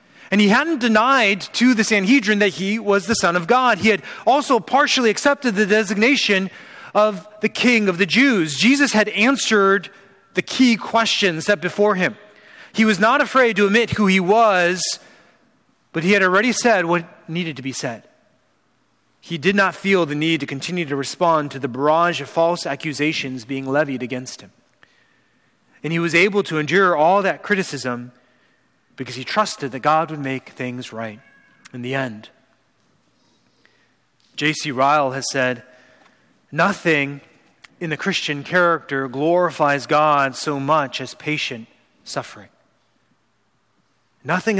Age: 30-49